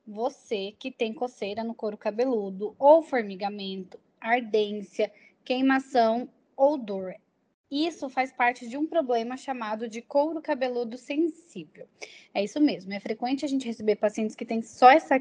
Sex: female